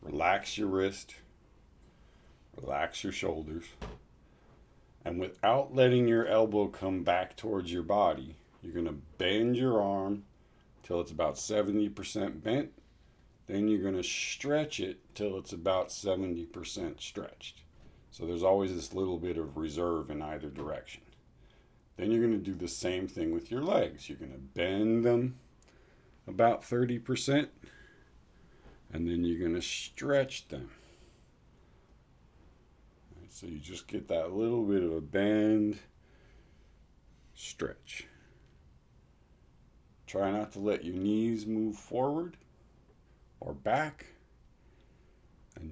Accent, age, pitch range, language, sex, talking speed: American, 50-69, 80-105 Hz, English, male, 120 wpm